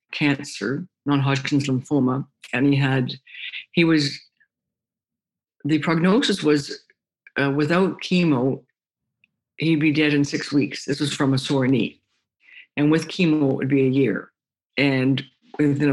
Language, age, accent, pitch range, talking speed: English, 60-79, American, 125-145 Hz, 135 wpm